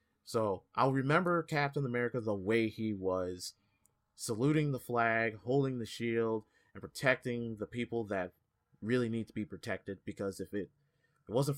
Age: 30-49